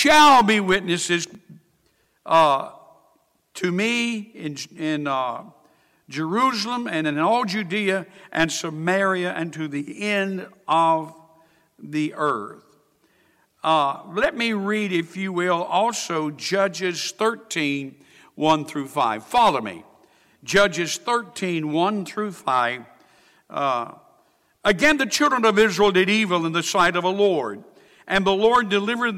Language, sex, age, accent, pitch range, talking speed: English, male, 60-79, American, 165-215 Hz, 125 wpm